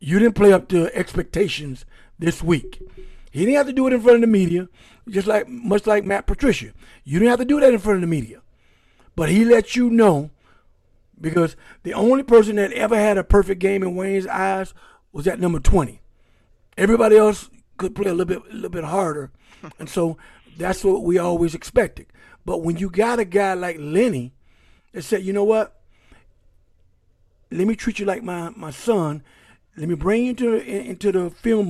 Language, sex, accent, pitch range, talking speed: English, male, American, 160-220 Hz, 200 wpm